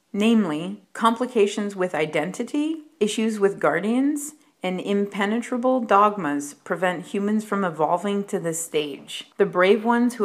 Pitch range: 180-235 Hz